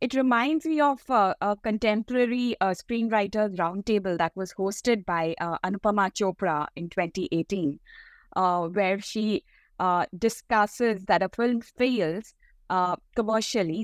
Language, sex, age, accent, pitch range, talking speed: English, female, 20-39, Indian, 180-220 Hz, 130 wpm